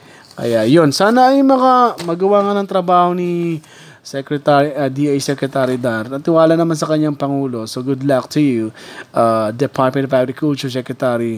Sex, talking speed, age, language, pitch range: male, 160 wpm, 20-39, Filipino, 130-170 Hz